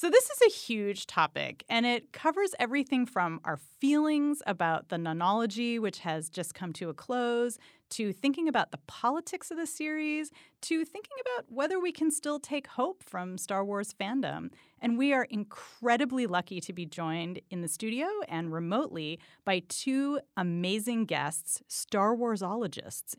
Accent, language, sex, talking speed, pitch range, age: American, English, female, 165 wpm, 170-275 Hz, 30-49